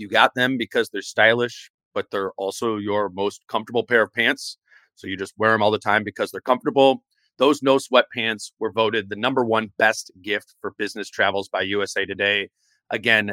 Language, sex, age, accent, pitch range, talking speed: English, male, 30-49, American, 110-130 Hz, 195 wpm